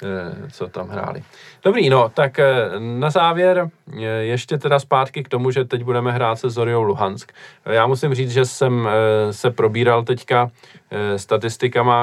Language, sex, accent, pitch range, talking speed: Czech, male, native, 110-130 Hz, 145 wpm